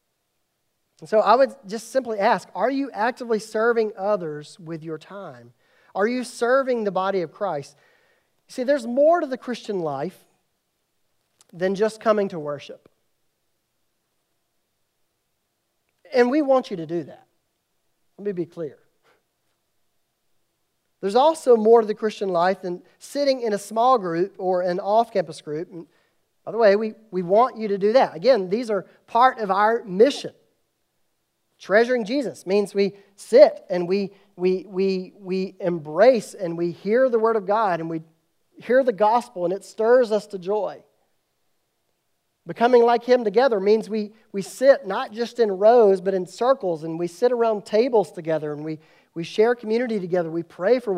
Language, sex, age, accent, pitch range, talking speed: English, male, 40-59, American, 180-235 Hz, 165 wpm